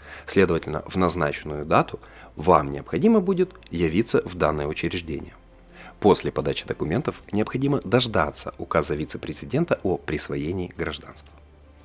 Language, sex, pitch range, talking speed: Russian, male, 75-110 Hz, 105 wpm